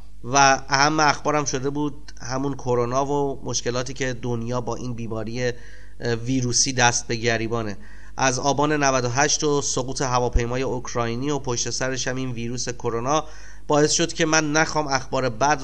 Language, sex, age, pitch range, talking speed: Persian, male, 30-49, 125-150 Hz, 145 wpm